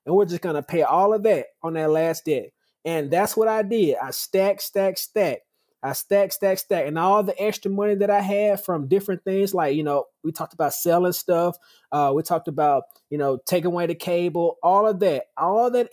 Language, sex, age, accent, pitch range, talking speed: English, male, 20-39, American, 160-205 Hz, 225 wpm